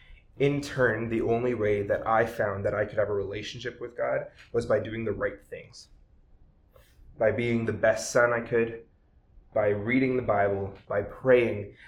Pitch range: 105-125 Hz